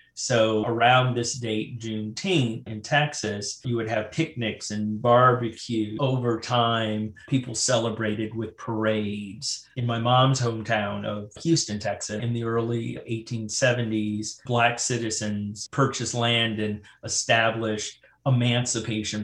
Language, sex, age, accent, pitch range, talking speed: English, male, 30-49, American, 110-125 Hz, 115 wpm